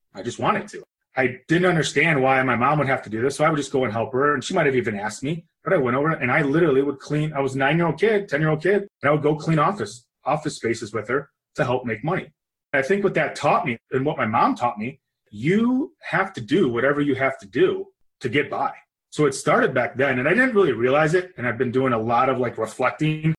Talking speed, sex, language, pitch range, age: 265 wpm, male, English, 120-160 Hz, 30-49